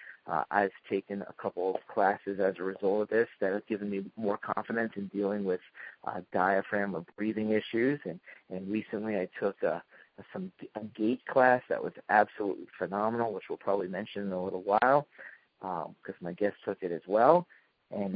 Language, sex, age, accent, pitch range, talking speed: English, male, 40-59, American, 100-125 Hz, 190 wpm